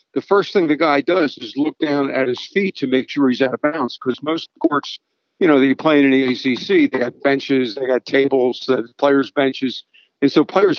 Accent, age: American, 60-79